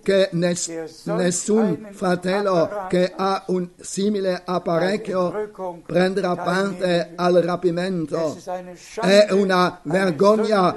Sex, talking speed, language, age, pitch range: male, 85 wpm, Italian, 50-69, 175-195 Hz